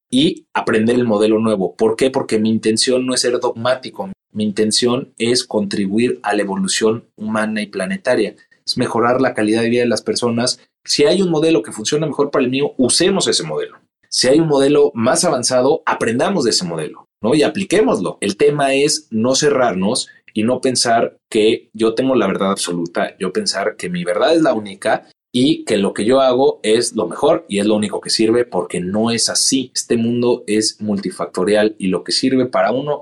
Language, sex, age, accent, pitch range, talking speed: Spanish, male, 40-59, Mexican, 105-130 Hz, 200 wpm